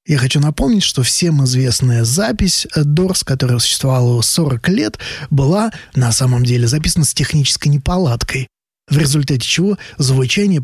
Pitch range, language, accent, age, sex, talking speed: 125-160 Hz, Russian, native, 20-39, male, 135 wpm